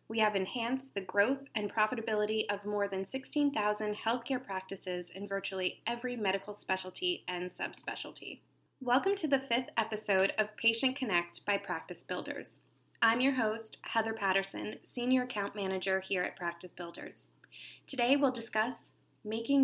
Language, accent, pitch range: English, American, 190-240 Hz